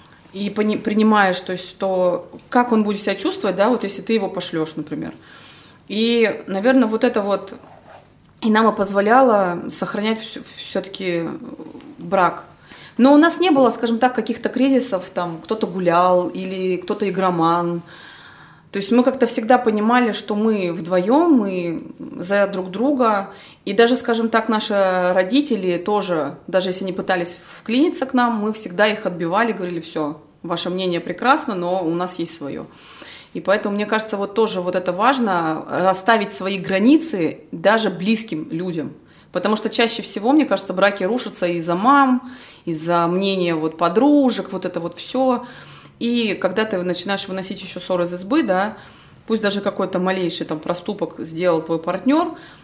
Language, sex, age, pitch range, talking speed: Russian, female, 20-39, 180-230 Hz, 155 wpm